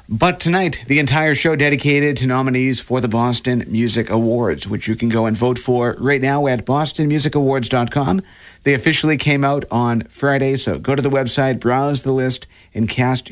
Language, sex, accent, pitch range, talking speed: English, male, American, 115-150 Hz, 180 wpm